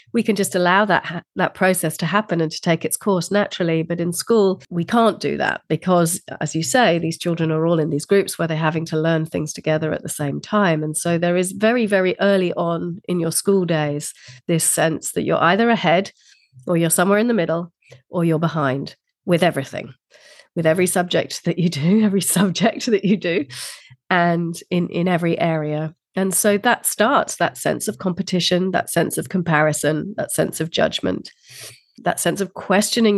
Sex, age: female, 40-59